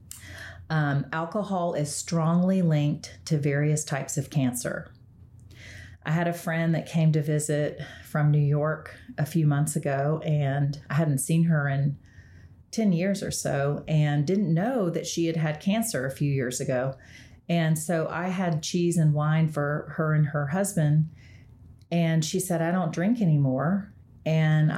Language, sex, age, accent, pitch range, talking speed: English, female, 40-59, American, 140-165 Hz, 160 wpm